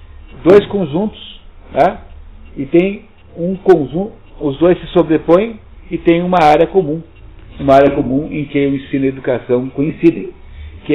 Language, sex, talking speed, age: Portuguese, male, 155 wpm, 60-79